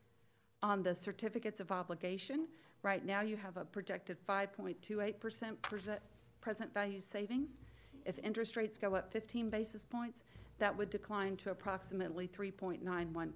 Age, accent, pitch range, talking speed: 50-69, American, 180-220 Hz, 135 wpm